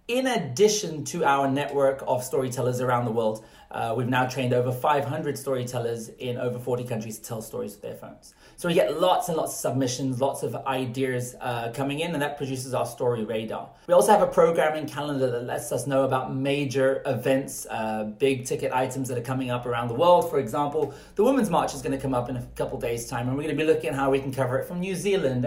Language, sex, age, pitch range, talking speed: English, male, 30-49, 125-155 Hz, 240 wpm